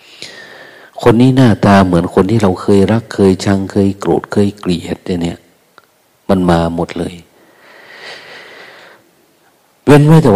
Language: Thai